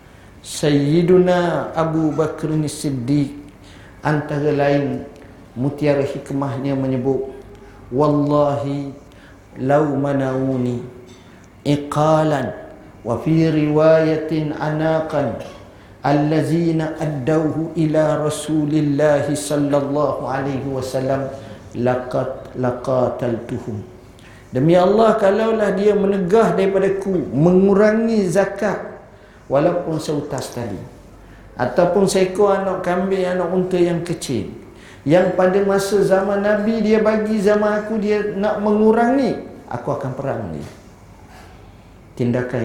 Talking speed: 90 wpm